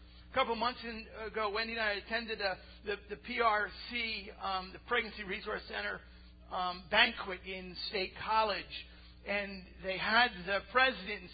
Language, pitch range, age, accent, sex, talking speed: English, 185-240 Hz, 50-69, American, male, 150 wpm